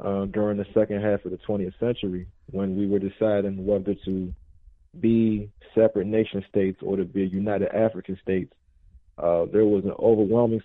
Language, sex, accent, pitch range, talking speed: English, male, American, 95-110 Hz, 175 wpm